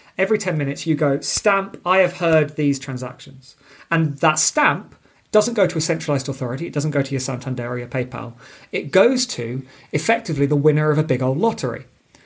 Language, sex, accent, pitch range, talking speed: English, male, British, 140-185 Hz, 195 wpm